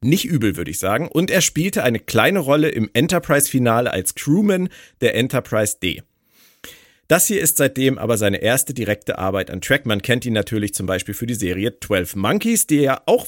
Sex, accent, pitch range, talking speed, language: male, German, 110-160 Hz, 195 wpm, German